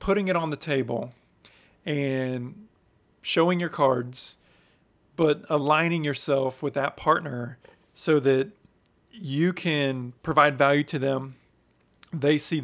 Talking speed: 120 wpm